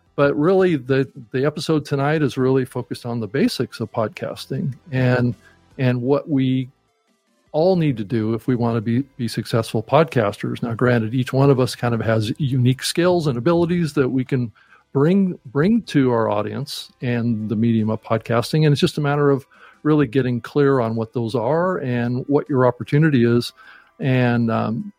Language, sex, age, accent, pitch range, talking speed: English, male, 50-69, American, 120-150 Hz, 180 wpm